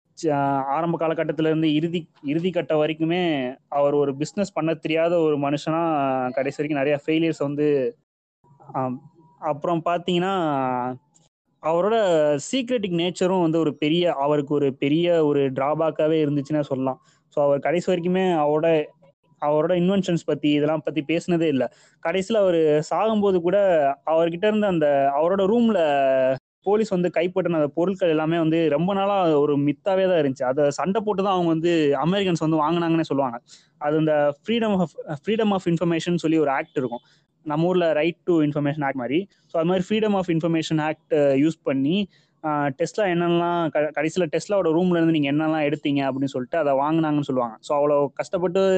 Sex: male